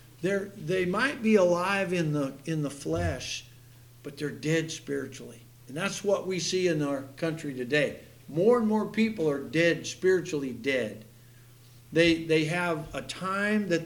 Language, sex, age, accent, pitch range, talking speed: English, male, 60-79, American, 140-185 Hz, 160 wpm